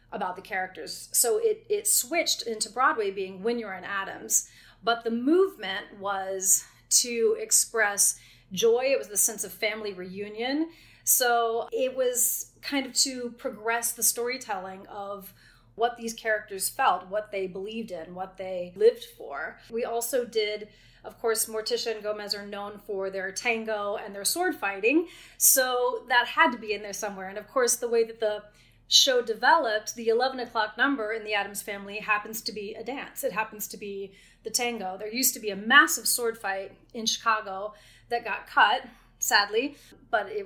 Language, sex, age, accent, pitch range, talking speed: English, female, 30-49, American, 200-240 Hz, 175 wpm